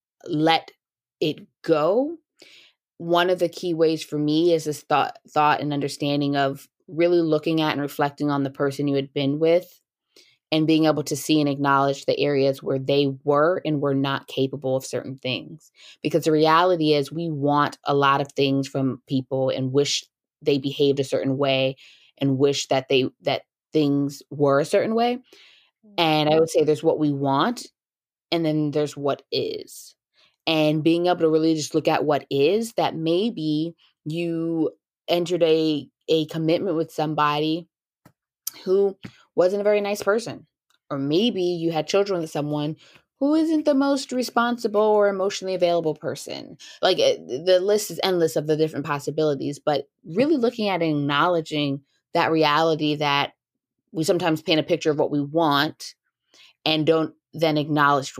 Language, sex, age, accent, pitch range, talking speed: English, female, 20-39, American, 145-170 Hz, 165 wpm